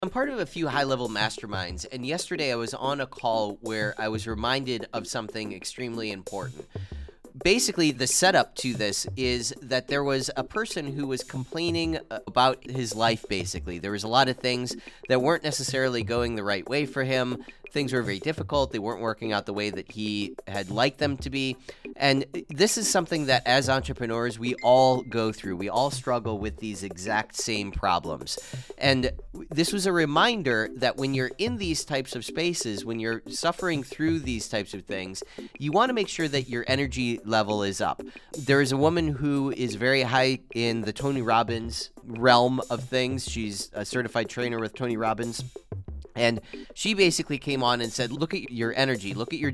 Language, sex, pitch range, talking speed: English, male, 115-140 Hz, 195 wpm